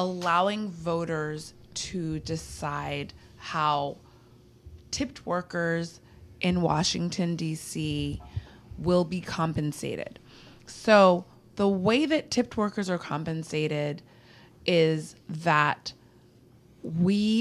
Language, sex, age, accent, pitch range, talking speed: English, female, 20-39, American, 145-195 Hz, 85 wpm